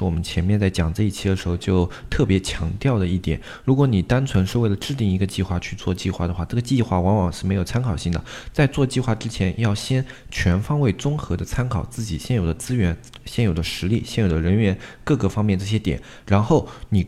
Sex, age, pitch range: male, 20-39, 90-120 Hz